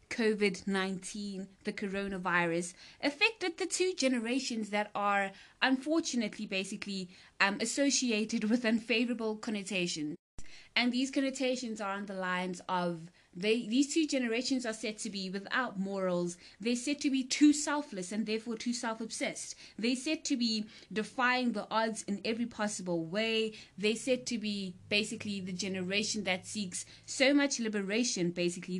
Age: 20-39